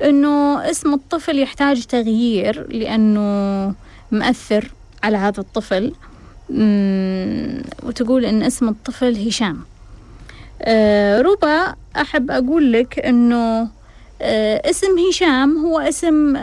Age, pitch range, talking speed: 20-39, 210-280 Hz, 95 wpm